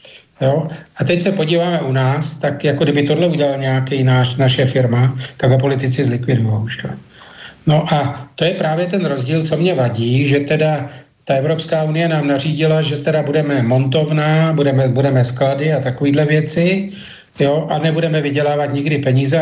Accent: native